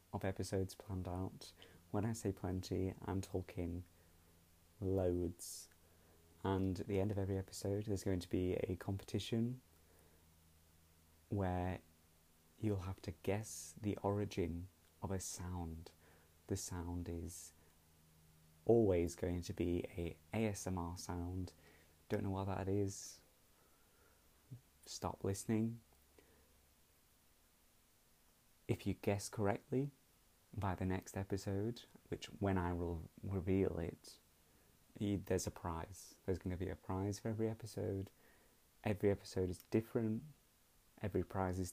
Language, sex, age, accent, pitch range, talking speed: English, male, 20-39, British, 85-100 Hz, 120 wpm